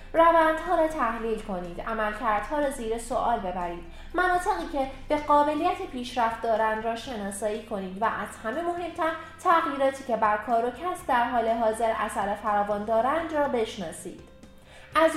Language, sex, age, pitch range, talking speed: Persian, female, 30-49, 215-295 Hz, 145 wpm